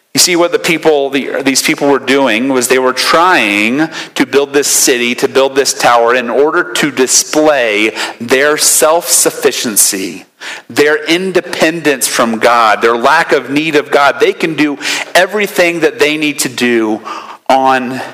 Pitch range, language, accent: 130-180 Hz, English, American